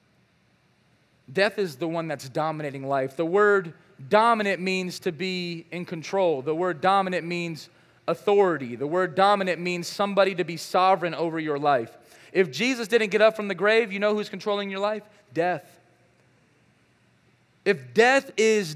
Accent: American